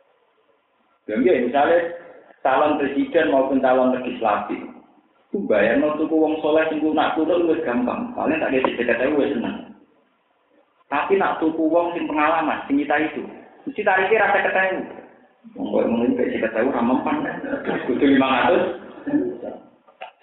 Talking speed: 140 wpm